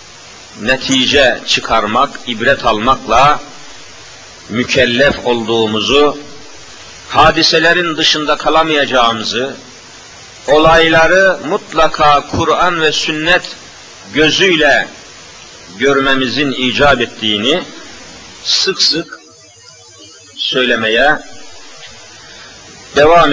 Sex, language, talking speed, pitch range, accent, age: male, Turkish, 55 wpm, 135-175 Hz, native, 50-69